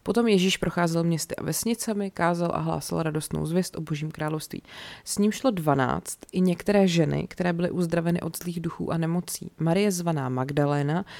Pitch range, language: 155-185 Hz, Czech